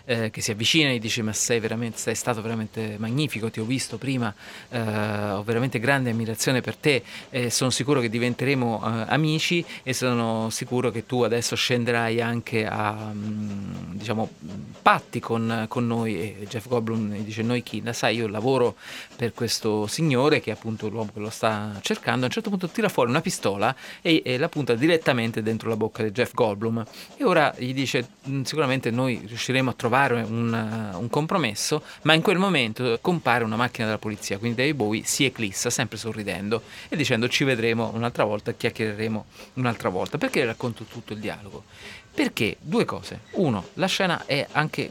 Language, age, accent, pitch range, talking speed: Italian, 30-49, native, 110-130 Hz, 185 wpm